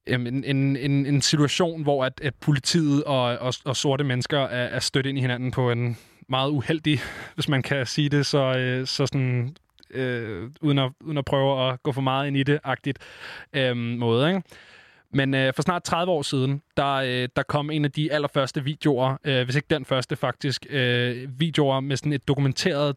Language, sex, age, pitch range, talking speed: Danish, male, 20-39, 125-145 Hz, 195 wpm